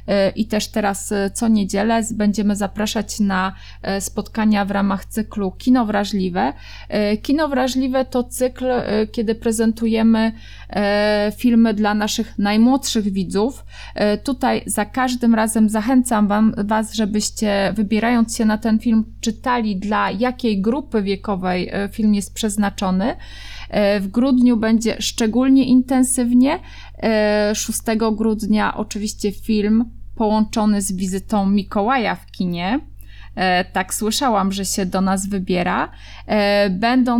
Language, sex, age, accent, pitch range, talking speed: Polish, female, 30-49, native, 200-230 Hz, 110 wpm